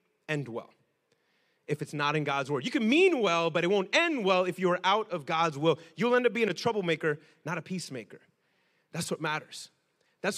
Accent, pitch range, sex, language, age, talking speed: American, 170-255 Hz, male, English, 30-49, 210 wpm